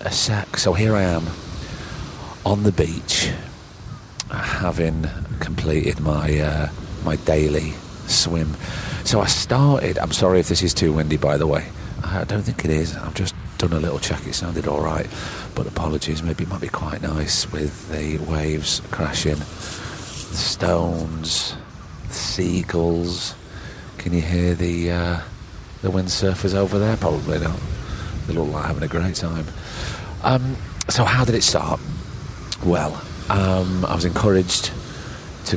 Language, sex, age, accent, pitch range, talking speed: English, male, 40-59, British, 80-105 Hz, 150 wpm